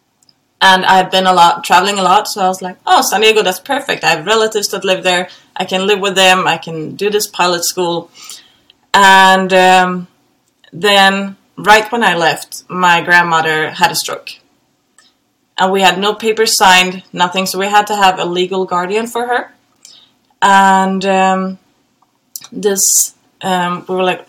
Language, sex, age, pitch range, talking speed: English, female, 20-39, 175-195 Hz, 175 wpm